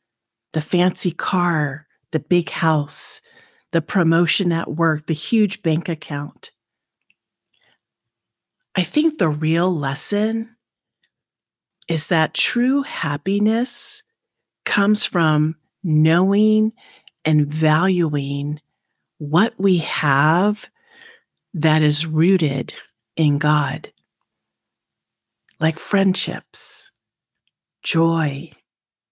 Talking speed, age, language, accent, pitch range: 80 wpm, 50-69, English, American, 155-205 Hz